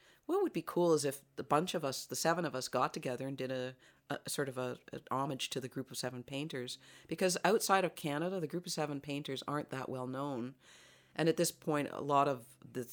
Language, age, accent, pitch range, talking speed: English, 40-59, American, 125-150 Hz, 240 wpm